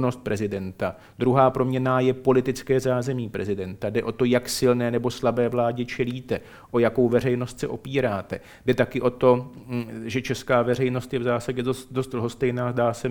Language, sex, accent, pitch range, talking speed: Czech, male, native, 120-130 Hz, 160 wpm